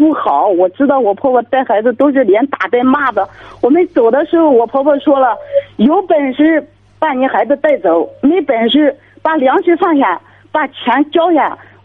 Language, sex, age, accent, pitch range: Chinese, female, 50-69, native, 215-295 Hz